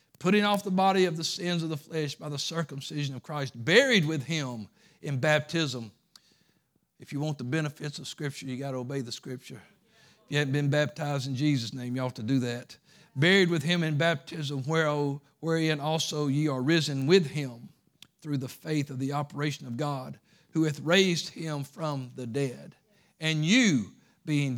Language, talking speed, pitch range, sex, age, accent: English, 185 wpm, 140-175 Hz, male, 50-69, American